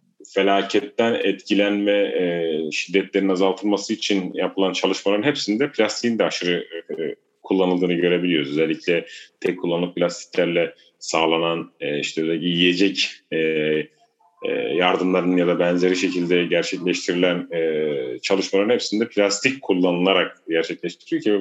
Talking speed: 90 wpm